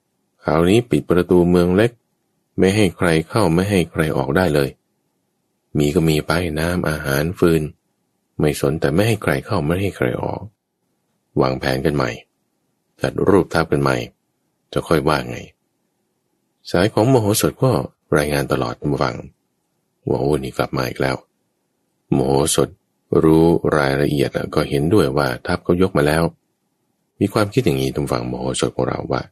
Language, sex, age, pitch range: English, male, 20-39, 70-90 Hz